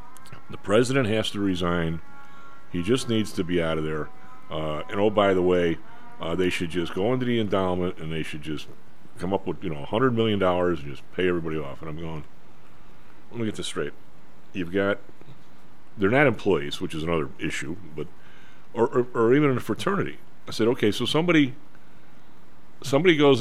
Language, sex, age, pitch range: English, male, 40-59, 90-110 Hz